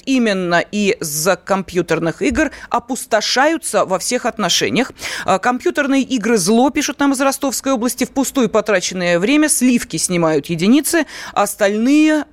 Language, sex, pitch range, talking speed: Russian, female, 190-250 Hz, 115 wpm